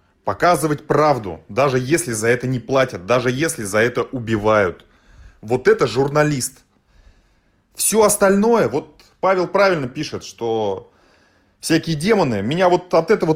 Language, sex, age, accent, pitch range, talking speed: Russian, male, 30-49, native, 115-195 Hz, 130 wpm